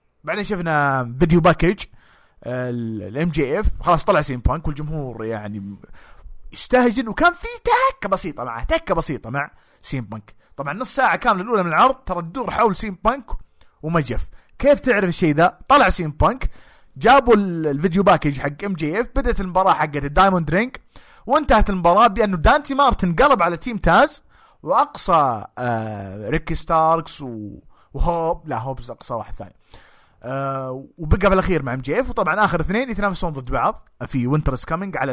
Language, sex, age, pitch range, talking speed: English, male, 30-49, 135-210 Hz, 140 wpm